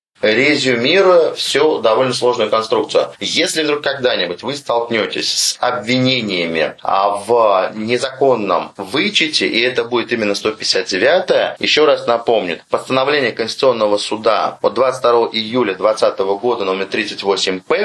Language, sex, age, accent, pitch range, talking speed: Russian, male, 30-49, native, 110-150 Hz, 110 wpm